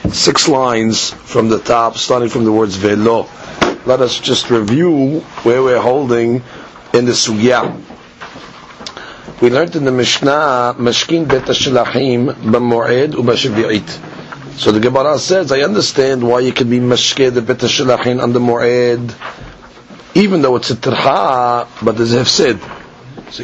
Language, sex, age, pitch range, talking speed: English, male, 40-59, 120-130 Hz, 140 wpm